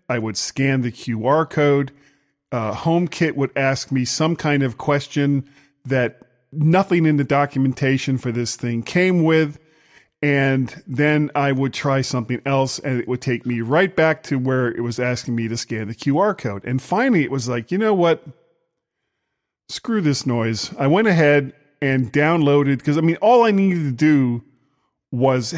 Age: 40-59